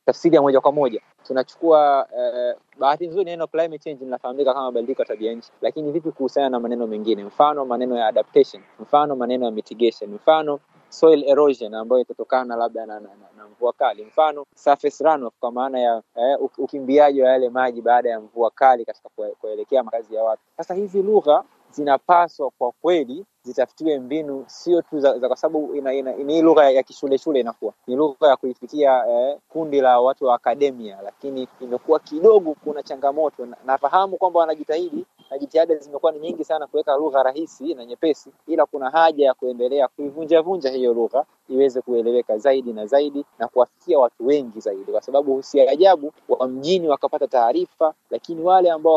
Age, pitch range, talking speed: 20-39, 125-160 Hz, 175 wpm